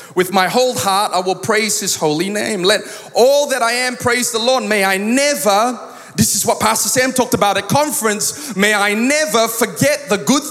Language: English